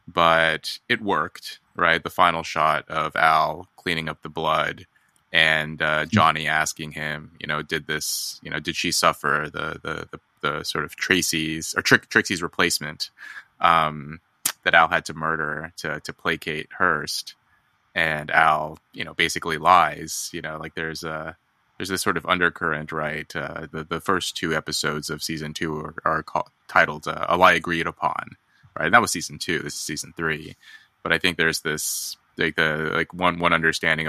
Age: 20-39